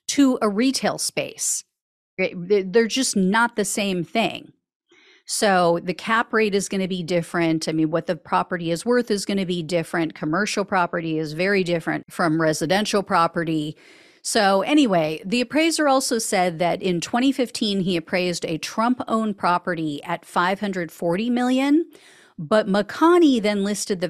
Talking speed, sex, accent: 145 wpm, female, American